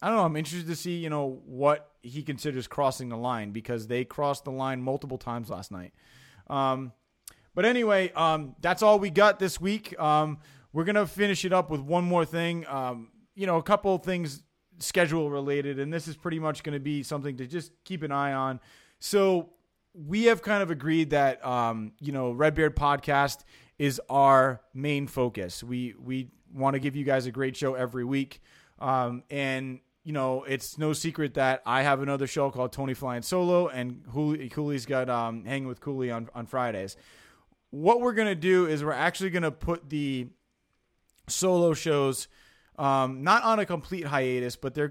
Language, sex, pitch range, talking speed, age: English, male, 130-165 Hz, 195 wpm, 30-49